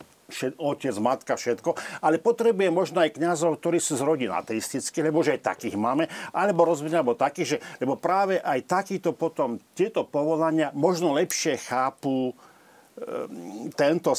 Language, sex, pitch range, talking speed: Slovak, male, 115-150 Hz, 140 wpm